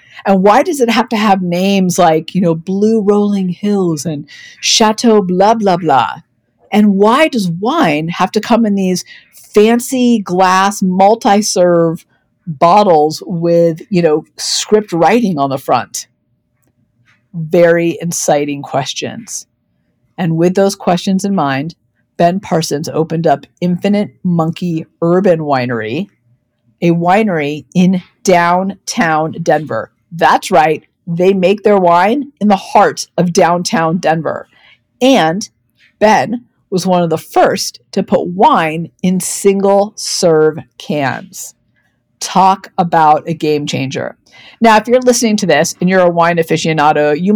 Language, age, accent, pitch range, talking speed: English, 50-69, American, 160-200 Hz, 135 wpm